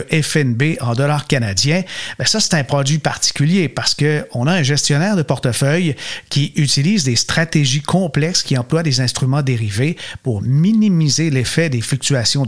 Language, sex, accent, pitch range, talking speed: French, male, Canadian, 130-165 Hz, 150 wpm